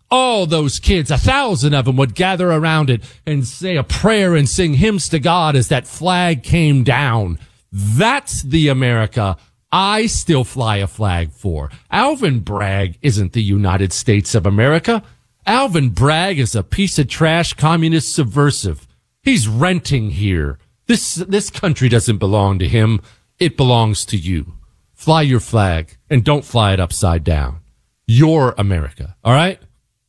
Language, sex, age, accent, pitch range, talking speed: English, male, 40-59, American, 100-150 Hz, 155 wpm